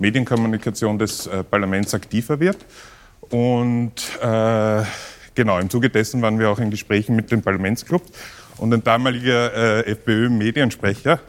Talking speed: 130 wpm